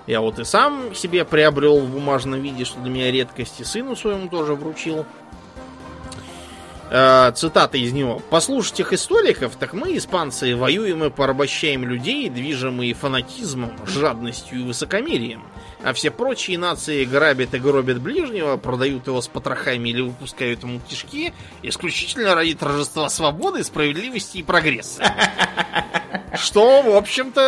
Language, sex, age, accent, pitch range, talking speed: Russian, male, 20-39, native, 125-185 Hz, 135 wpm